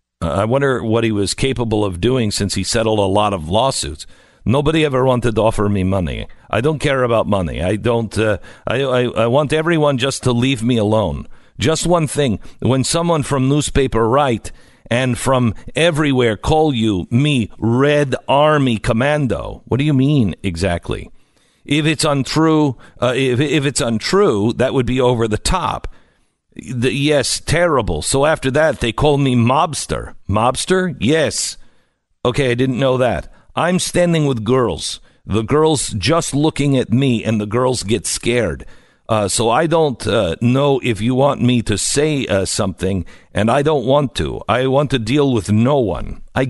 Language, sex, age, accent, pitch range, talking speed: English, male, 50-69, American, 110-145 Hz, 175 wpm